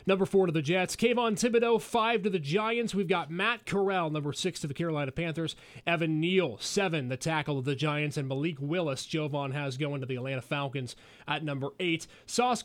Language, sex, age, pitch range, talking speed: English, male, 30-49, 150-200 Hz, 205 wpm